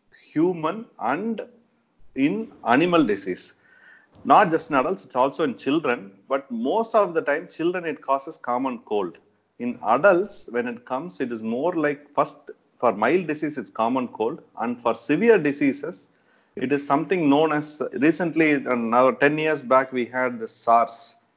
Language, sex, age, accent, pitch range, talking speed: English, male, 40-59, Indian, 120-170 Hz, 160 wpm